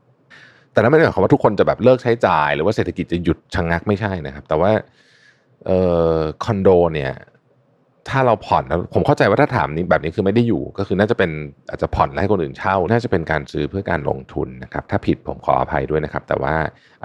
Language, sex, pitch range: Thai, male, 75-95 Hz